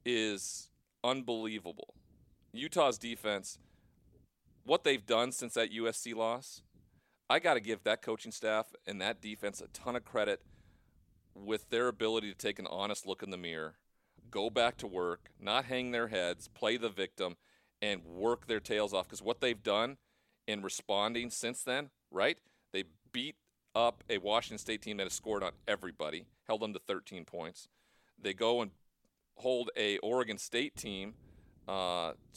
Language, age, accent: English, 40-59, American